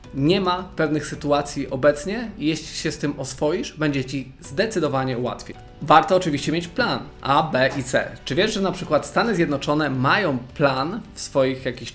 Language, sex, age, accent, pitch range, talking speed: Polish, male, 20-39, native, 130-170 Hz, 175 wpm